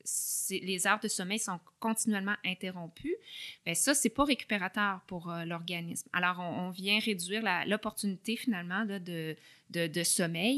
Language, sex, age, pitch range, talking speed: French, female, 20-39, 180-220 Hz, 165 wpm